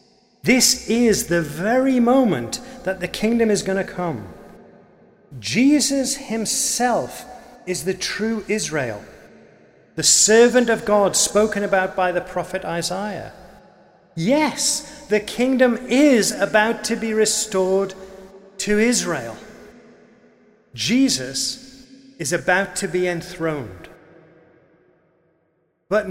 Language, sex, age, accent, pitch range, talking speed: English, male, 40-59, British, 165-230 Hz, 105 wpm